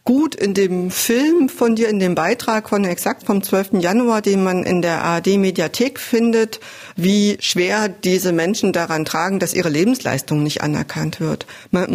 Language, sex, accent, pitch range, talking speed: German, female, German, 175-225 Hz, 170 wpm